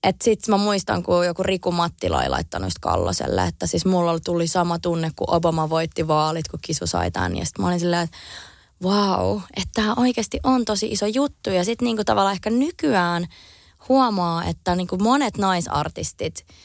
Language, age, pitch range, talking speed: Finnish, 20-39, 155-205 Hz, 180 wpm